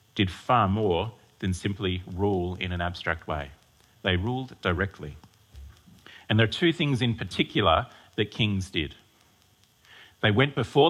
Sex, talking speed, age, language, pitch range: male, 145 wpm, 40-59, English, 95-120 Hz